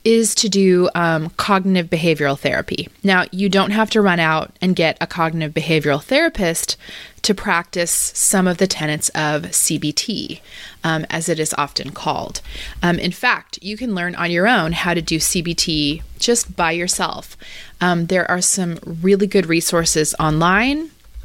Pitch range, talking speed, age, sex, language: 165-200 Hz, 165 wpm, 20-39, female, English